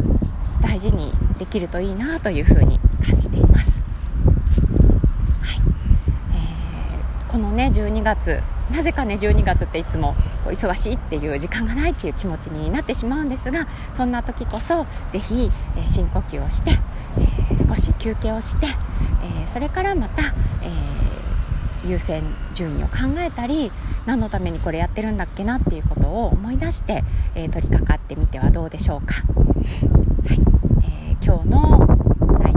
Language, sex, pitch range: Japanese, female, 75-105 Hz